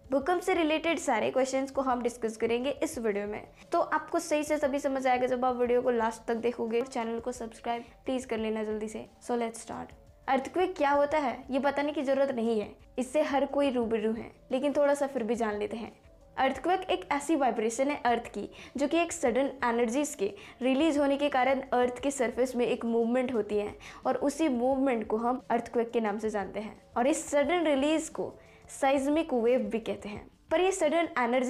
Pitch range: 235-285 Hz